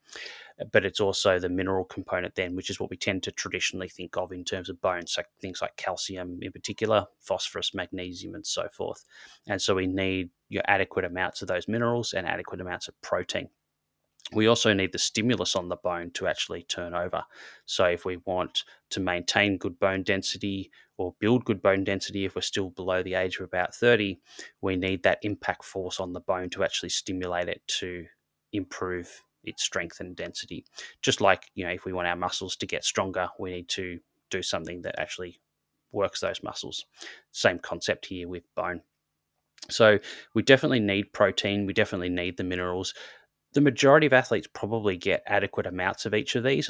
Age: 20-39